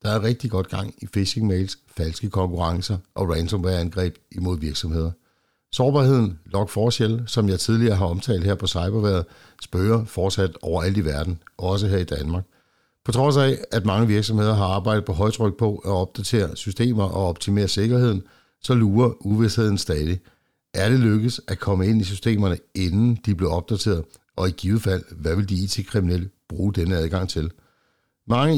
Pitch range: 95-115 Hz